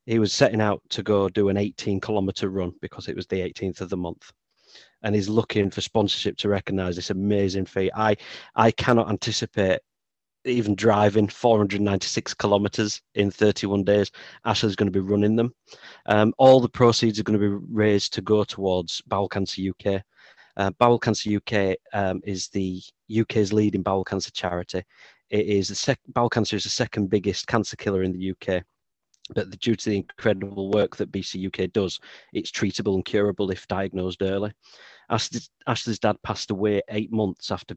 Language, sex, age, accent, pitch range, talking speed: English, male, 30-49, British, 95-110 Hz, 175 wpm